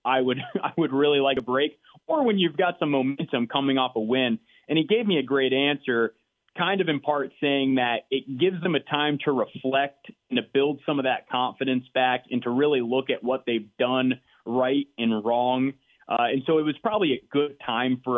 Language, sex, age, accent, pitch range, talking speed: English, male, 30-49, American, 125-145 Hz, 220 wpm